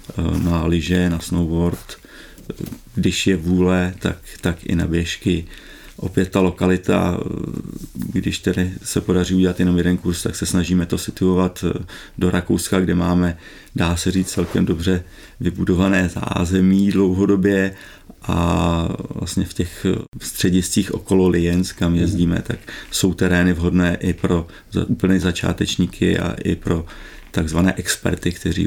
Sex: male